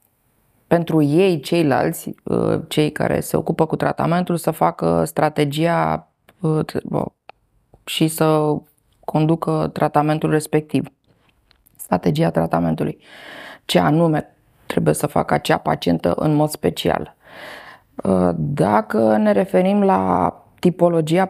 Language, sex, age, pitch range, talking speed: Romanian, female, 20-39, 115-175 Hz, 95 wpm